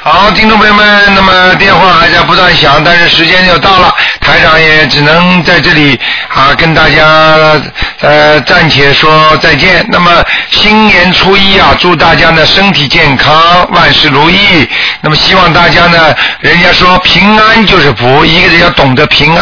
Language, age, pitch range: Chinese, 50-69, 150-190 Hz